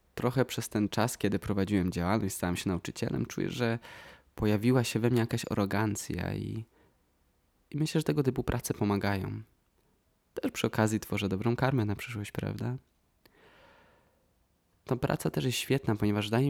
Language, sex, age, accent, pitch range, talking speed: Polish, male, 20-39, native, 95-120 Hz, 155 wpm